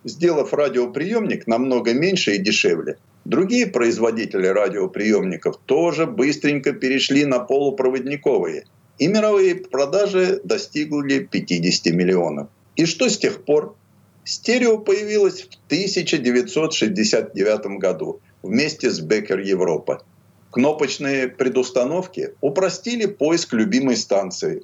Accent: native